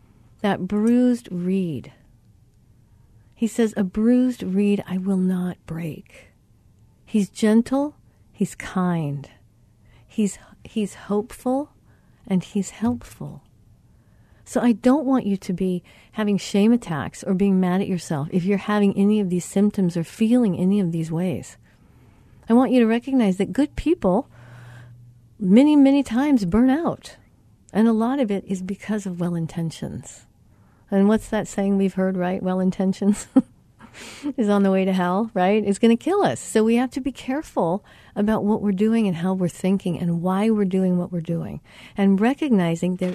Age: 50-69